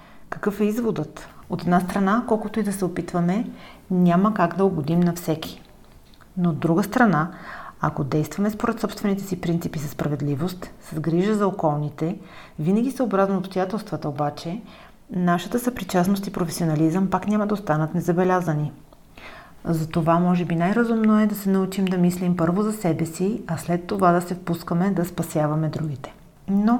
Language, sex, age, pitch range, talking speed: Bulgarian, female, 40-59, 160-200 Hz, 160 wpm